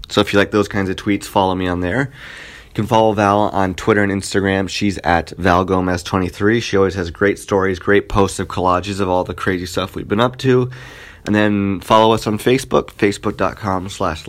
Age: 30-49